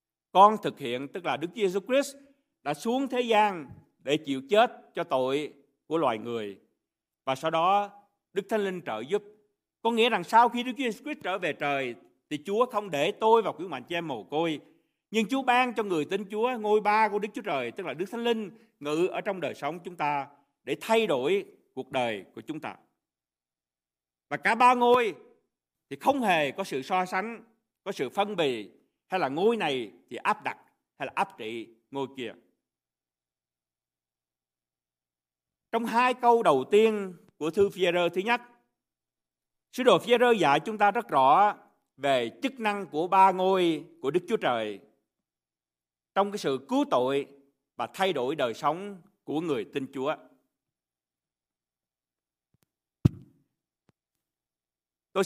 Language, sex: Vietnamese, male